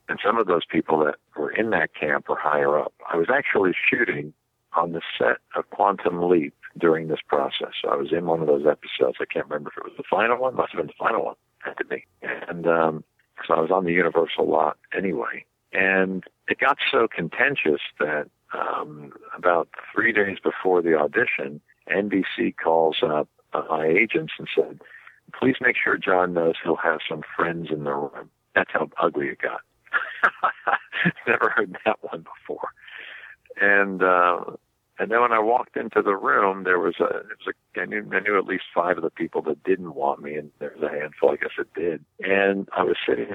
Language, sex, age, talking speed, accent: English, male, 60-79, 205 wpm, American